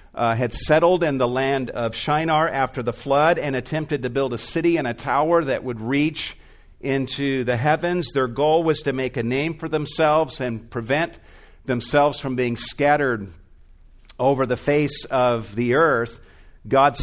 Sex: male